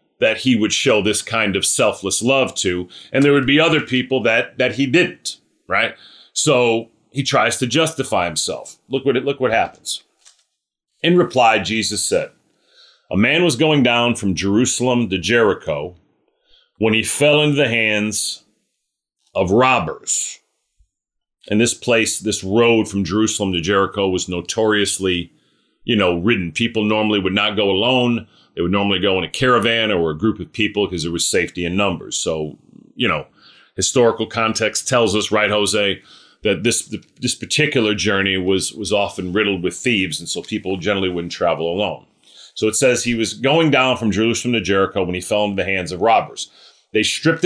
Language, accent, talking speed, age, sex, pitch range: English, American, 175 wpm, 40-59, male, 100-125 Hz